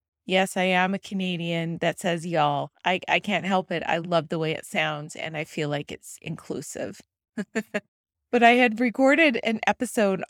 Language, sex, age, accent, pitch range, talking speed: English, female, 30-49, American, 175-215 Hz, 180 wpm